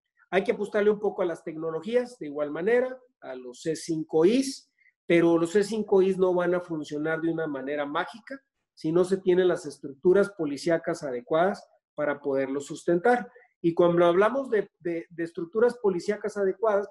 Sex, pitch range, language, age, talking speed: male, 165-225 Hz, Spanish, 40-59, 160 wpm